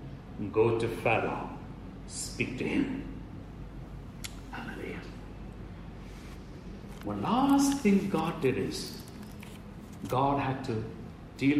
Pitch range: 130-155 Hz